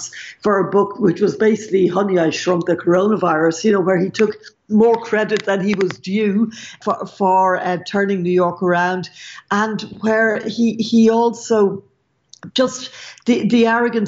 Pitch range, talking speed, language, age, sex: 180-215 Hz, 160 wpm, English, 60-79, female